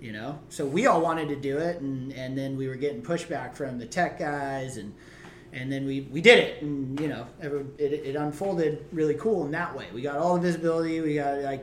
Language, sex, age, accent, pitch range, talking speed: English, male, 30-49, American, 150-200 Hz, 235 wpm